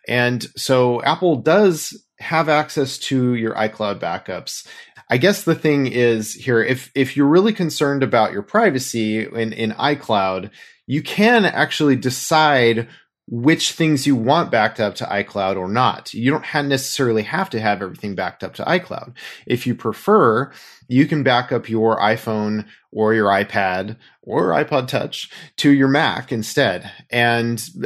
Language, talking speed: English, 155 wpm